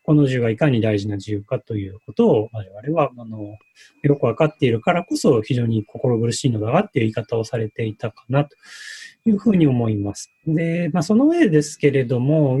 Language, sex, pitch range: Japanese, male, 120-180 Hz